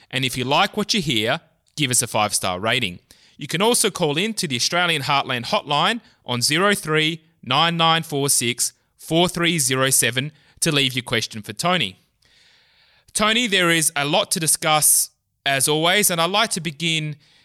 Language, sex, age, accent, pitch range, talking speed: English, male, 20-39, Australian, 120-155 Hz, 160 wpm